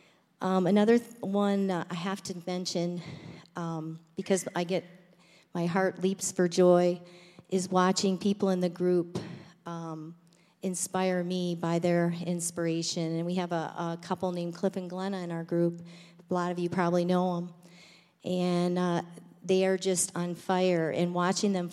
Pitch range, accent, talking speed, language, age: 170-190 Hz, American, 165 wpm, English, 40-59